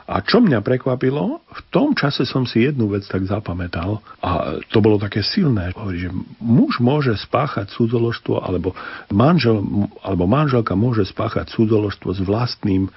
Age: 50-69